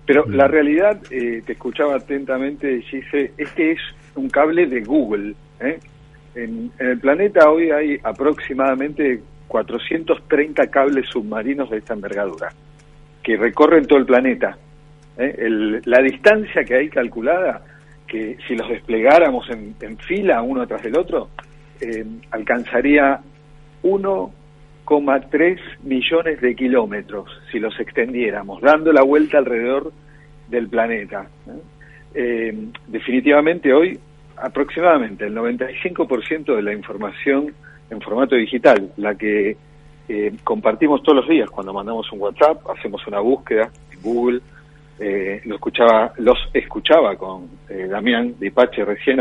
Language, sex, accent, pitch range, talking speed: Spanish, male, Argentinian, 115-150 Hz, 130 wpm